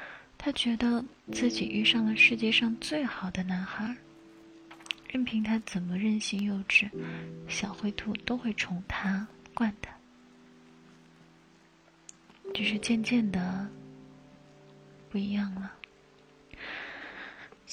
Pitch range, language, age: 160-215 Hz, Chinese, 20-39